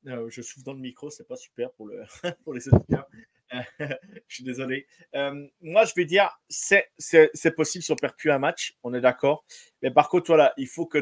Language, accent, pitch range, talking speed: French, French, 135-175 Hz, 235 wpm